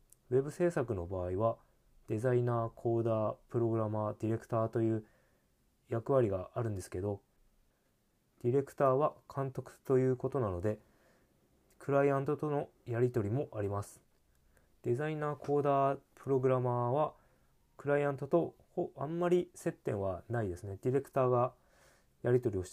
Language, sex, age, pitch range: Japanese, male, 20-39, 100-135 Hz